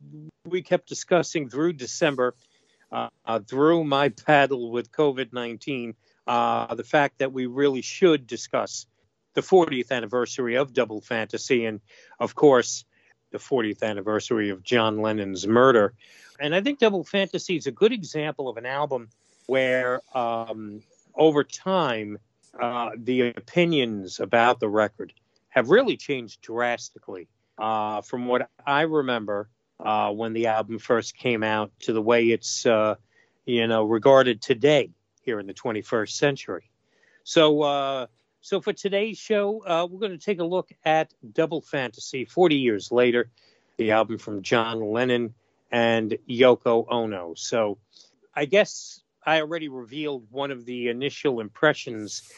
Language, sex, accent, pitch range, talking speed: English, male, American, 115-150 Hz, 145 wpm